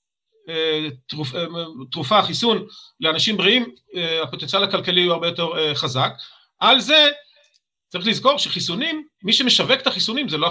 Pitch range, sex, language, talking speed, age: 160-210 Hz, male, Hebrew, 125 wpm, 40-59